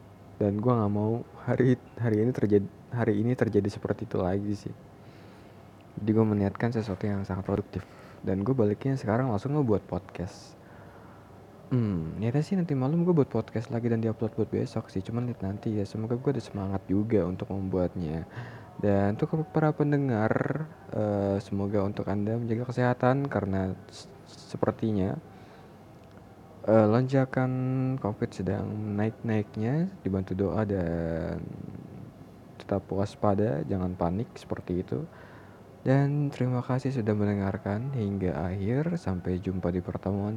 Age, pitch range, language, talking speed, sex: 20-39, 100-120 Hz, Indonesian, 135 wpm, male